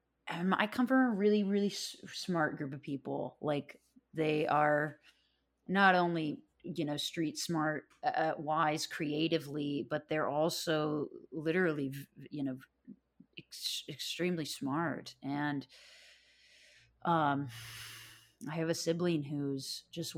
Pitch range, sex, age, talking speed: 140-170 Hz, female, 30-49, 120 wpm